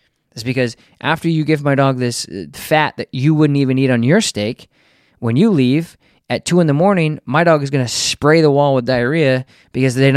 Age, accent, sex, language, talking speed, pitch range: 20-39, American, male, English, 220 wpm, 115-145 Hz